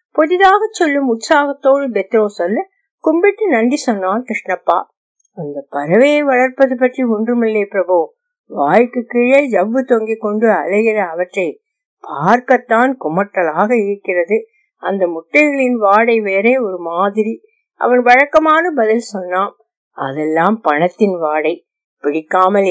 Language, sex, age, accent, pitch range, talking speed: Tamil, female, 60-79, native, 185-255 Hz, 100 wpm